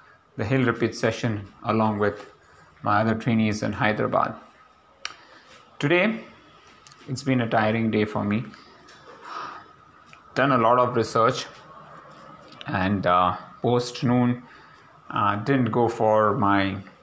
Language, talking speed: English, 115 wpm